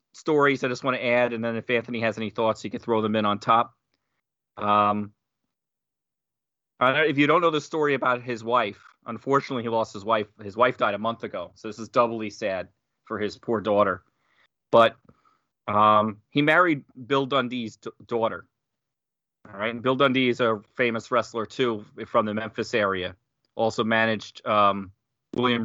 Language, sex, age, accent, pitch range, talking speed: English, male, 30-49, American, 105-130 Hz, 175 wpm